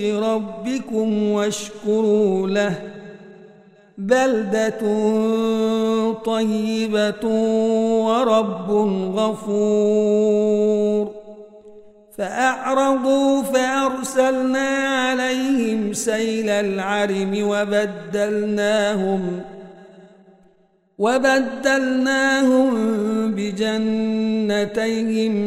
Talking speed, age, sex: 35 wpm, 50-69, male